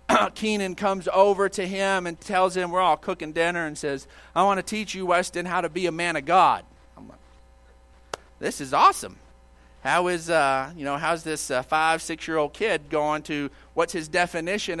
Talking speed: 205 wpm